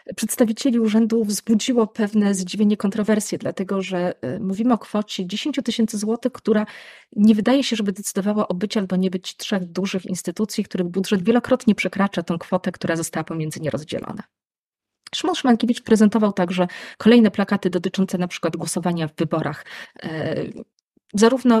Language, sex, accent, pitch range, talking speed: Polish, female, native, 185-225 Hz, 140 wpm